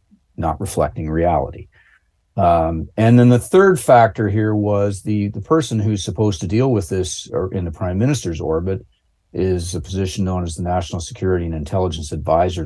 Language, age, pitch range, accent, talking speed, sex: English, 50-69, 85-105 Hz, American, 175 wpm, male